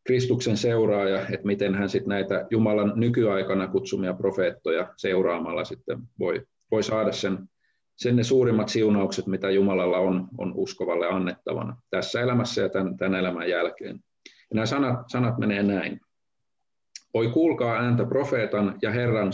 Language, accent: Finnish, native